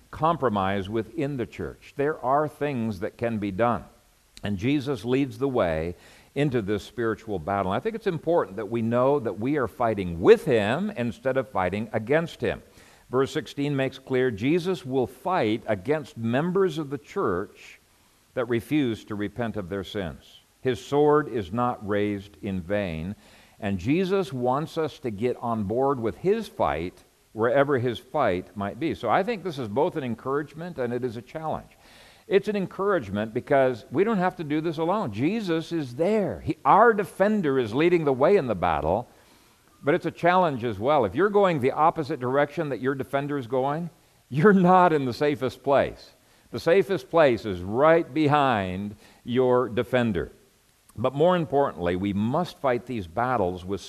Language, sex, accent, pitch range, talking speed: English, male, American, 110-155 Hz, 175 wpm